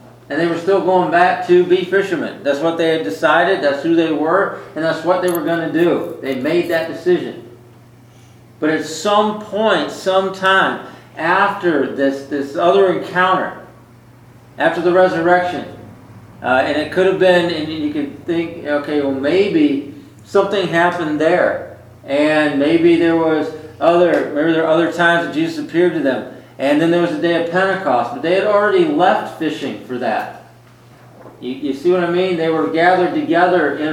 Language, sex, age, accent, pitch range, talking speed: English, male, 40-59, American, 140-185 Hz, 180 wpm